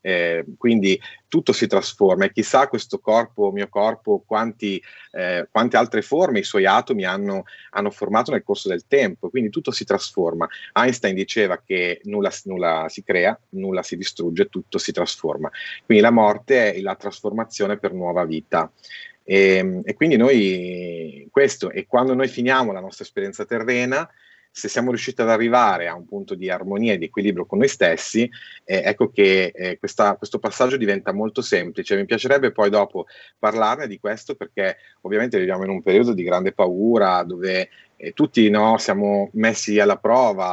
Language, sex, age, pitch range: Italian, male, 30-49, 95-115 Hz